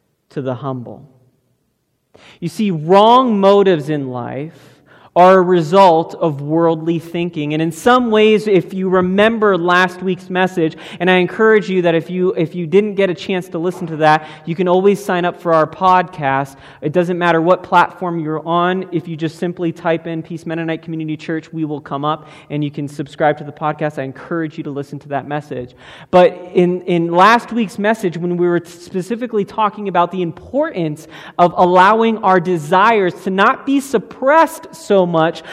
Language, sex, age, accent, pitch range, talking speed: English, male, 30-49, American, 160-200 Hz, 185 wpm